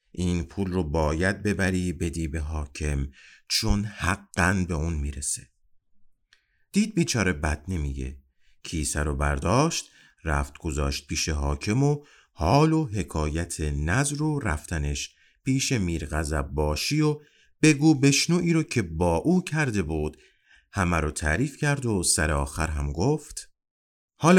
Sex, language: male, Persian